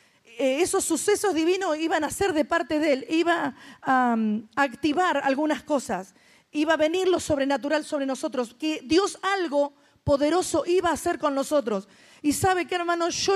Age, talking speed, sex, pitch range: 40-59, 165 wpm, female, 270-350 Hz